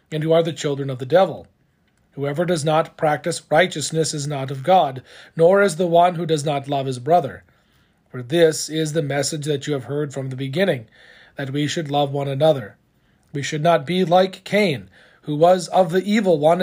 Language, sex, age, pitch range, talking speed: English, male, 40-59, 140-180 Hz, 205 wpm